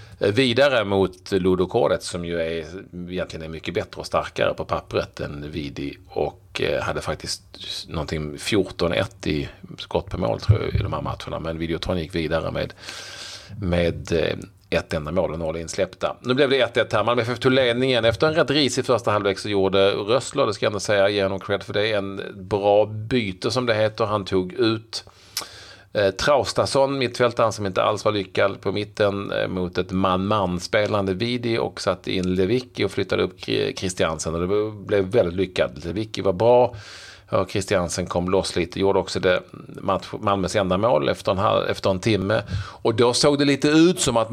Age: 40-59